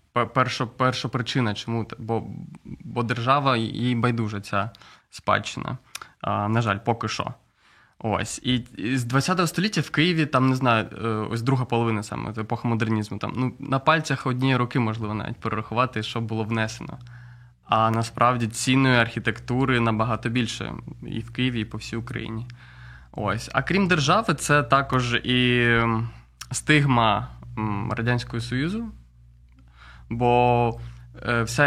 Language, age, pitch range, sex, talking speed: Ukrainian, 20-39, 110-125 Hz, male, 135 wpm